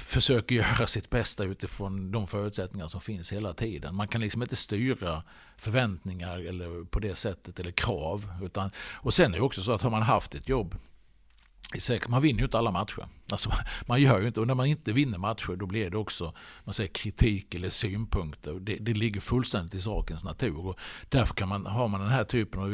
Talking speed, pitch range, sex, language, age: 205 wpm, 90-115 Hz, male, English, 50-69